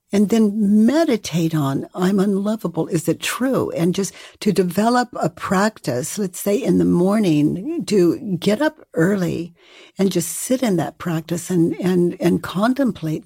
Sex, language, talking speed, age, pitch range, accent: female, English, 155 wpm, 60-79, 170-210 Hz, American